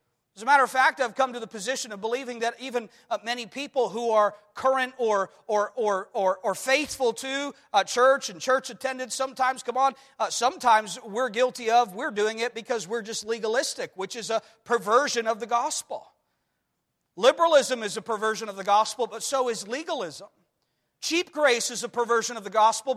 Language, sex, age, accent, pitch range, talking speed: English, male, 40-59, American, 225-285 Hz, 190 wpm